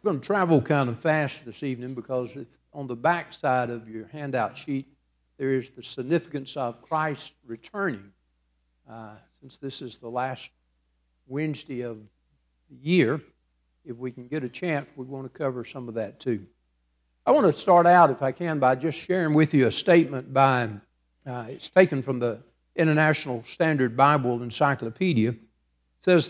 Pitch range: 125-170 Hz